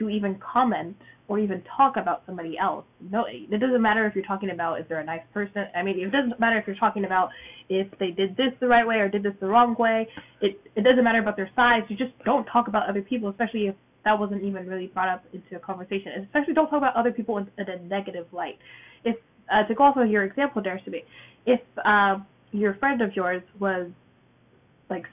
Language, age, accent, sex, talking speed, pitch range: English, 10-29, American, female, 240 wpm, 185-230 Hz